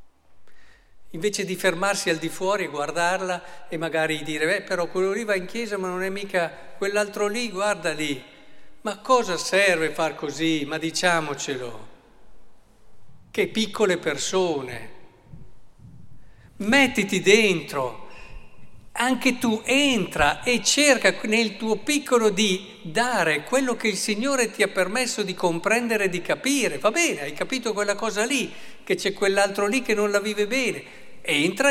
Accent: native